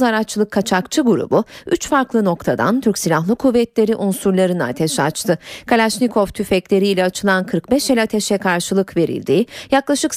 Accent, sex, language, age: native, female, Turkish, 40-59